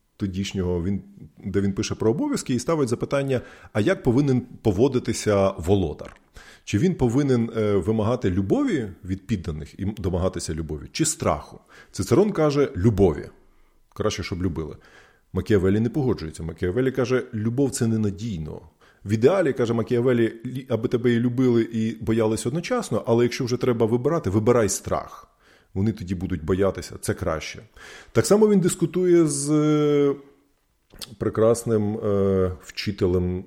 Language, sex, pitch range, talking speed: Ukrainian, male, 95-120 Hz, 135 wpm